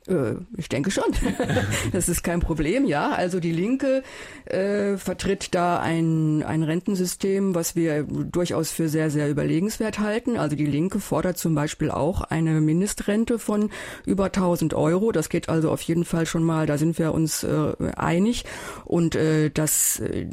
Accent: German